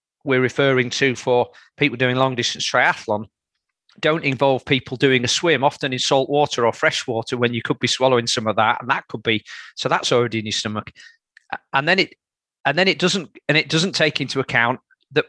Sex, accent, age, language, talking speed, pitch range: male, British, 40-59, English, 210 wpm, 115-135 Hz